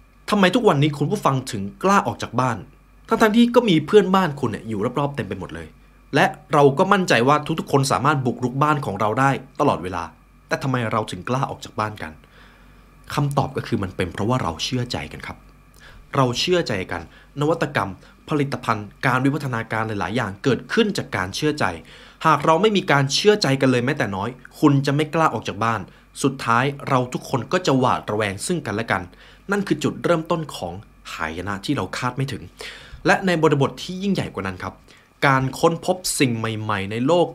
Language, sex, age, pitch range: Thai, male, 20-39, 110-160 Hz